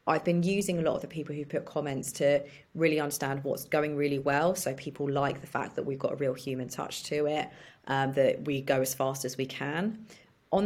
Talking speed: 235 wpm